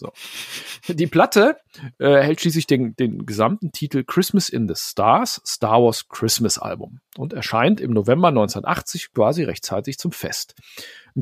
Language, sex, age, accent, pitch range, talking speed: German, male, 40-59, German, 130-175 Hz, 145 wpm